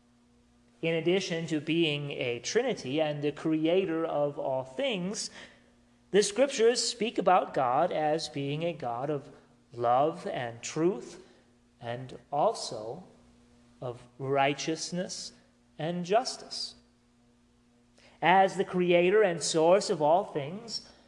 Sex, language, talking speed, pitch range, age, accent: male, English, 110 wpm, 120-185 Hz, 40-59, American